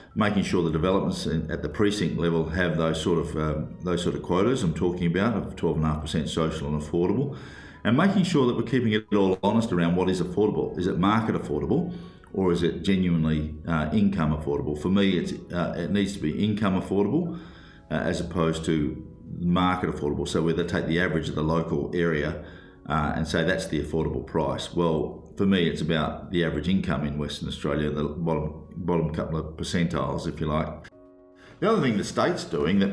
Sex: male